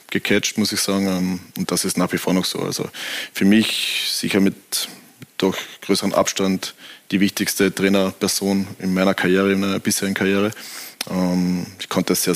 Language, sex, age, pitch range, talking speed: German, male, 20-39, 90-95 Hz, 165 wpm